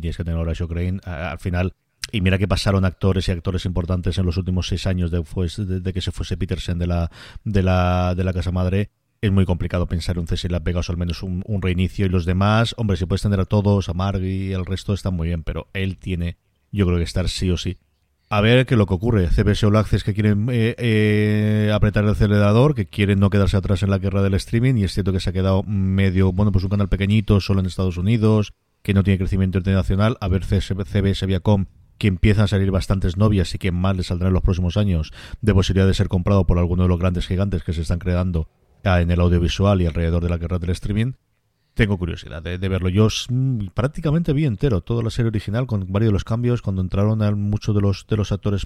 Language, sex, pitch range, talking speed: Spanish, male, 90-105 Hz, 240 wpm